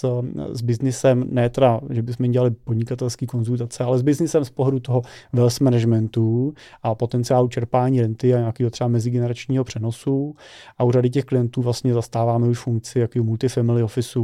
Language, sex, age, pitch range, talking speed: Czech, male, 30-49, 115-130 Hz, 165 wpm